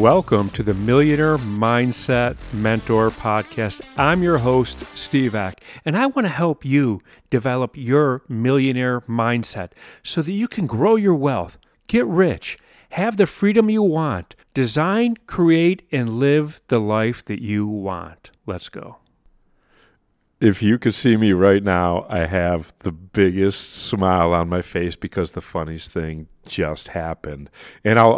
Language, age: English, 40-59